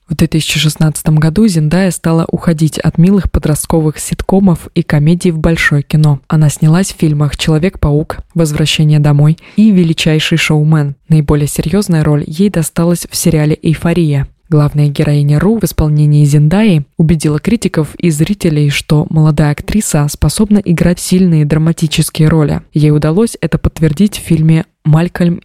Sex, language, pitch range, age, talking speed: female, Russian, 150-175 Hz, 20-39, 135 wpm